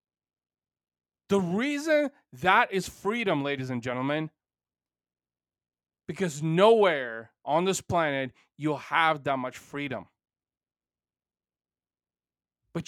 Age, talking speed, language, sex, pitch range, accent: 30-49, 90 wpm, English, male, 140-200 Hz, American